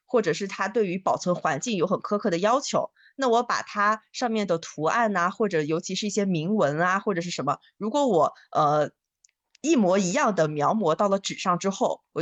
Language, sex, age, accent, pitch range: Chinese, female, 20-39, native, 170-220 Hz